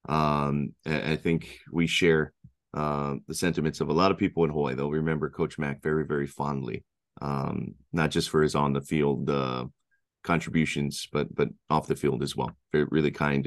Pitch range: 75-85 Hz